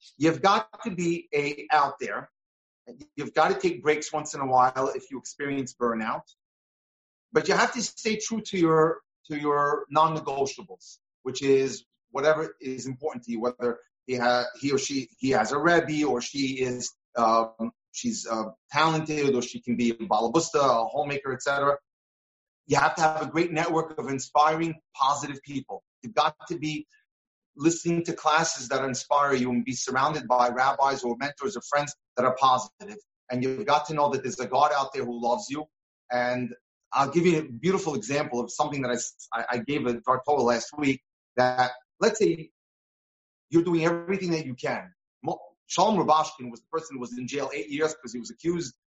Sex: male